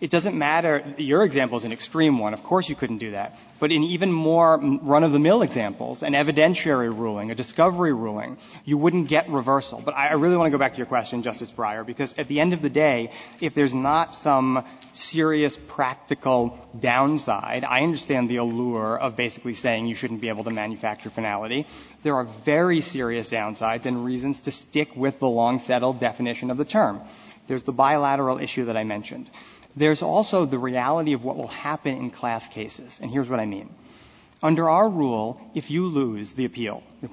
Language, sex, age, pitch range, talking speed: English, male, 30-49, 120-155 Hz, 190 wpm